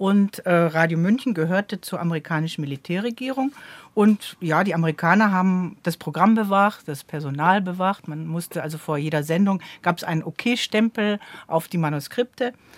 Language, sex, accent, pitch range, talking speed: German, female, German, 160-210 Hz, 150 wpm